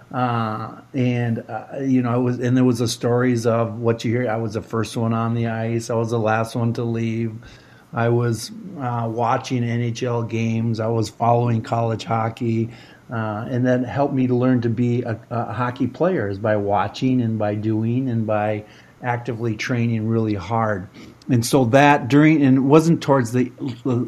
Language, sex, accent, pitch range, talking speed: English, male, American, 110-125 Hz, 190 wpm